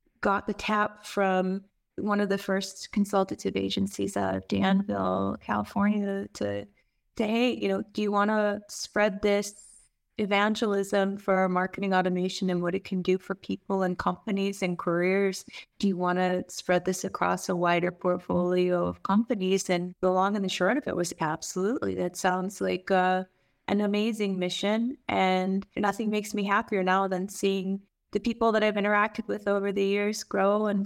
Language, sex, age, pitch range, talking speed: English, female, 30-49, 185-210 Hz, 165 wpm